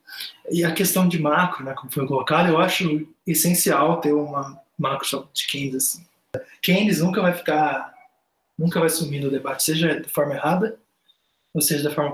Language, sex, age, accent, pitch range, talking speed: Portuguese, male, 20-39, Brazilian, 145-185 Hz, 175 wpm